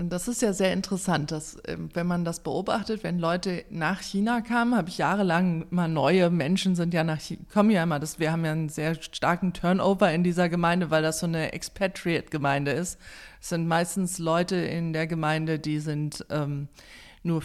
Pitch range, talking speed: 165-220 Hz, 195 wpm